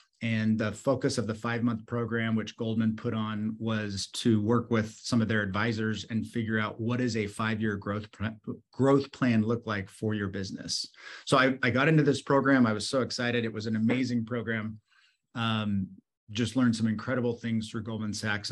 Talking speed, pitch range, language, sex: 200 wpm, 110-125 Hz, English, male